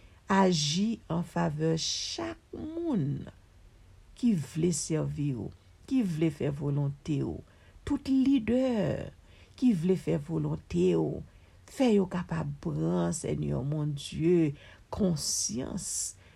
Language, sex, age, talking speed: English, female, 60-79, 105 wpm